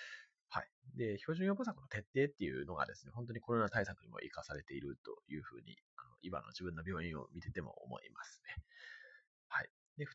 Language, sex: Japanese, male